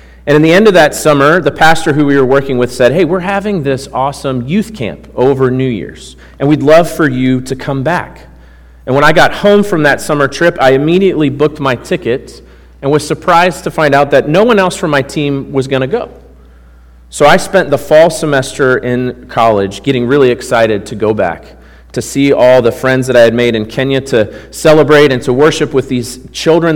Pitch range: 125-155 Hz